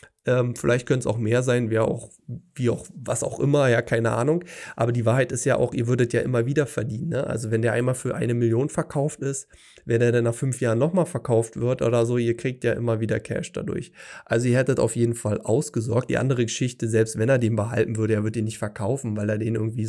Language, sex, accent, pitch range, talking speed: German, male, German, 115-130 Hz, 245 wpm